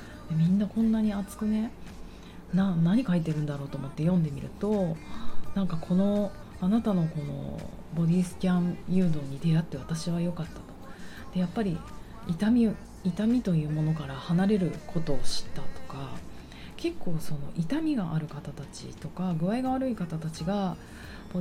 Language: Japanese